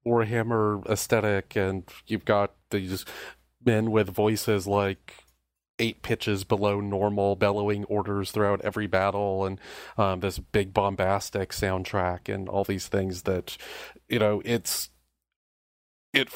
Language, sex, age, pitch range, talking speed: English, male, 30-49, 95-110 Hz, 125 wpm